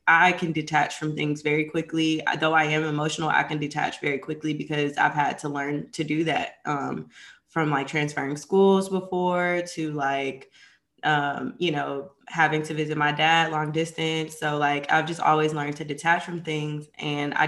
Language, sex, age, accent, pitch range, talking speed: English, female, 20-39, American, 150-165 Hz, 185 wpm